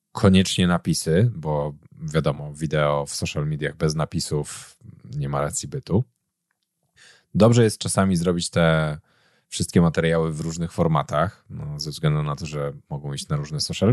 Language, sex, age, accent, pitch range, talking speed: Polish, male, 30-49, native, 85-130 Hz, 145 wpm